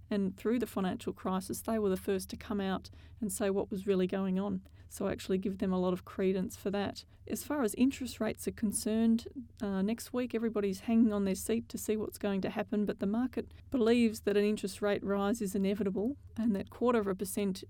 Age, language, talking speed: 30-49, English, 230 wpm